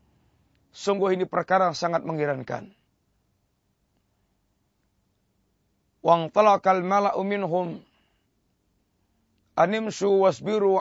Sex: male